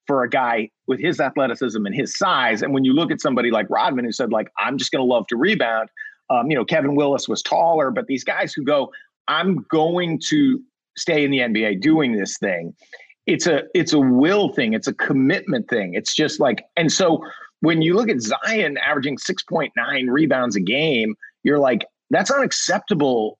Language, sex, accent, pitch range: English, male, American, 125-165 Hz